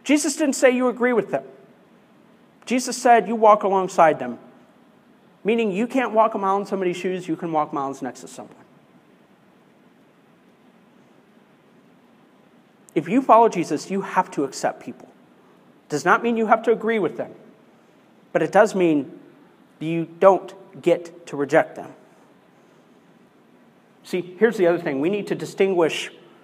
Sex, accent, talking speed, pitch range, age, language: male, American, 150 wpm, 175-230 Hz, 40-59, English